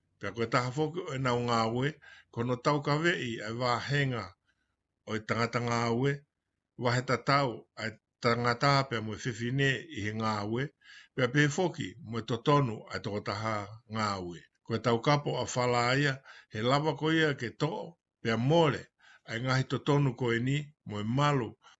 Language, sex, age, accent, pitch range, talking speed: English, male, 50-69, American, 115-145 Hz, 145 wpm